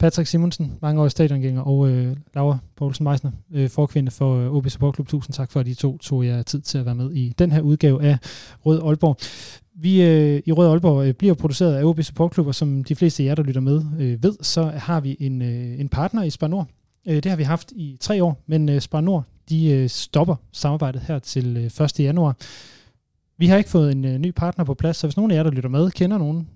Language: Danish